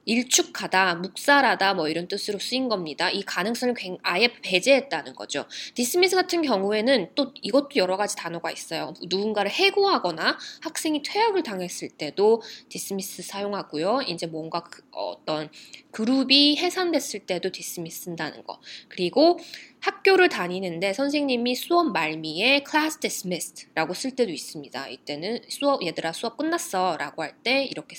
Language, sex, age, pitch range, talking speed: English, female, 20-39, 180-280 Hz, 125 wpm